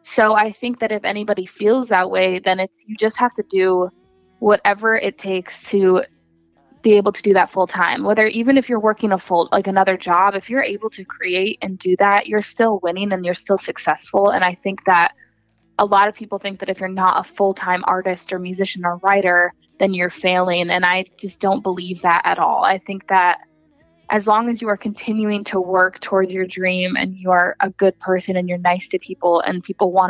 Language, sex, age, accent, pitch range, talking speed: English, female, 20-39, American, 180-205 Hz, 225 wpm